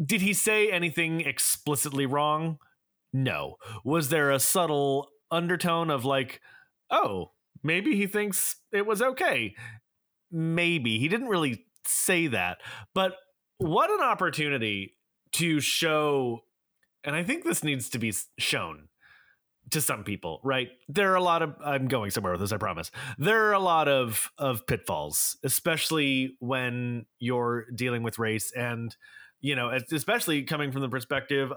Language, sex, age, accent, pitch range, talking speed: English, male, 30-49, American, 125-170 Hz, 150 wpm